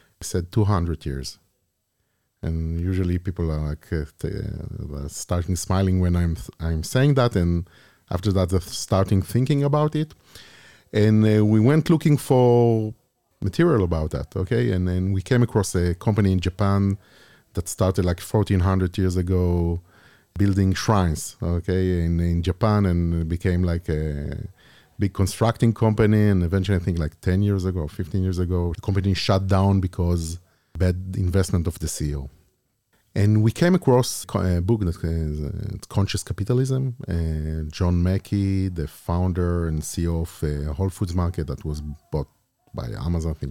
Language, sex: Hebrew, male